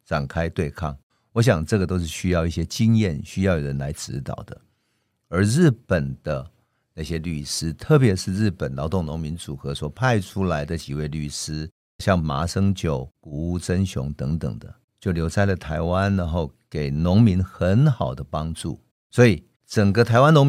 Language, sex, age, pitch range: Chinese, male, 50-69, 80-115 Hz